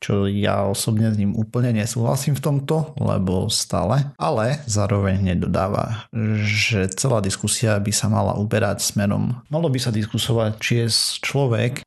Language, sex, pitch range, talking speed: Slovak, male, 105-120 Hz, 145 wpm